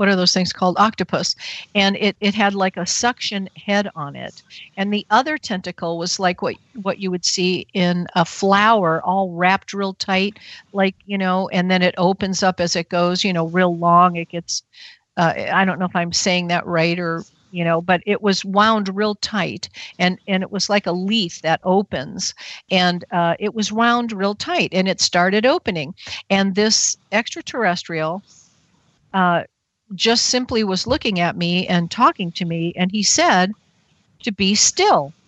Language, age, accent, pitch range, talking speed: English, 50-69, American, 180-215 Hz, 185 wpm